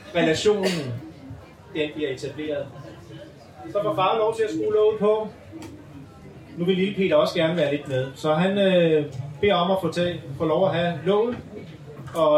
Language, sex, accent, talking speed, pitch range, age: Danish, male, native, 170 wpm, 145-190 Hz, 30-49